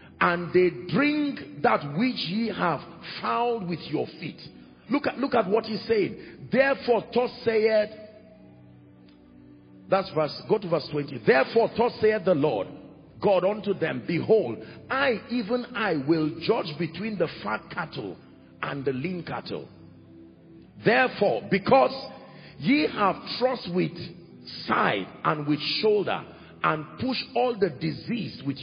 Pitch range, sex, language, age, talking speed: 160-230 Hz, male, English, 50-69, 135 wpm